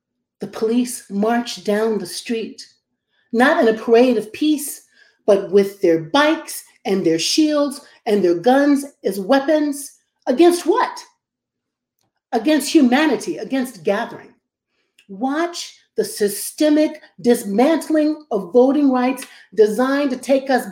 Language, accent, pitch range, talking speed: English, American, 220-310 Hz, 120 wpm